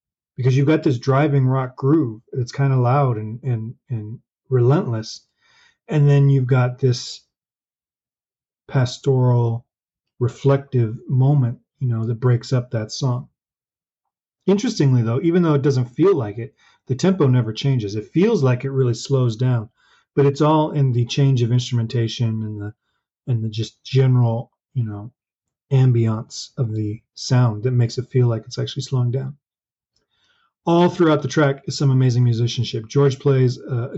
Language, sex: English, male